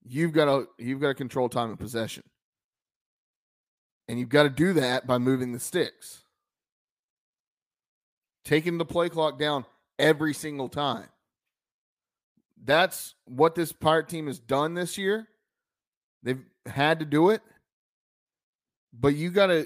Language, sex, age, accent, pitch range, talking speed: English, male, 30-49, American, 130-160 Hz, 135 wpm